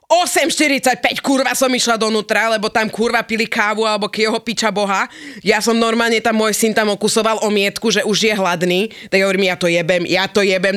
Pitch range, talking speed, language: 165-220 Hz, 200 wpm, Slovak